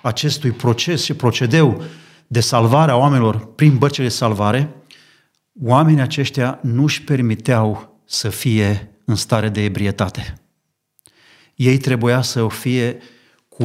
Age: 40-59